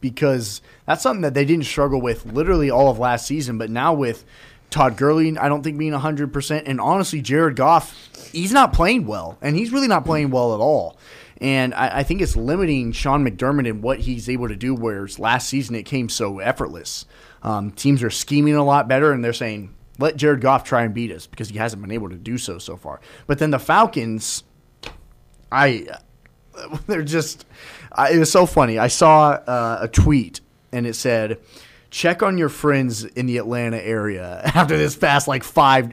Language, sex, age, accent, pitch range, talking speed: English, male, 20-39, American, 120-155 Hz, 200 wpm